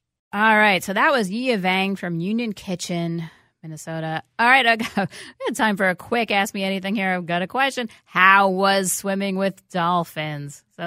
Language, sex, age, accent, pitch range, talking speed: English, female, 30-49, American, 165-220 Hz, 190 wpm